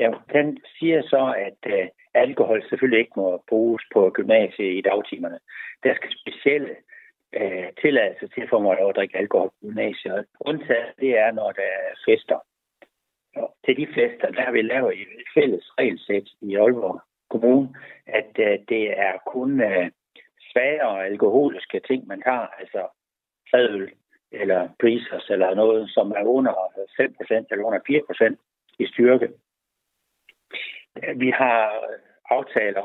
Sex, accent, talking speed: male, native, 140 wpm